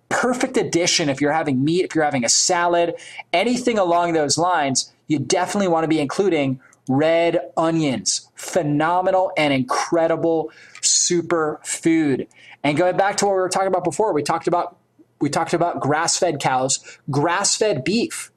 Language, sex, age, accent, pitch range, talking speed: English, male, 20-39, American, 150-190 Hz, 155 wpm